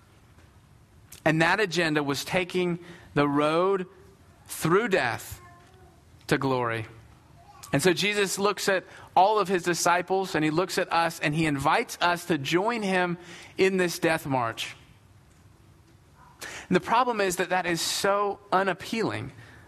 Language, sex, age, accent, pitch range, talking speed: English, male, 40-59, American, 120-190 Hz, 135 wpm